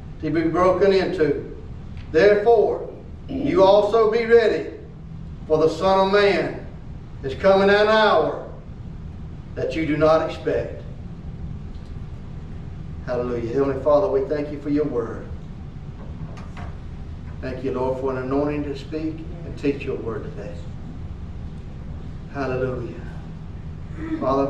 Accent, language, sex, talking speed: American, English, male, 115 wpm